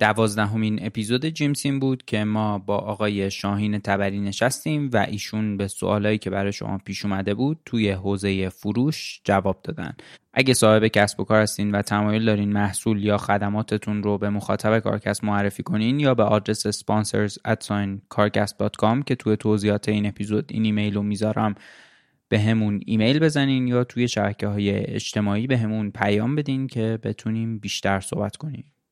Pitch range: 105-115 Hz